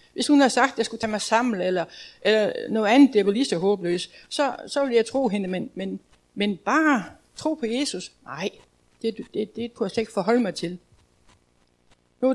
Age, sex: 60-79, female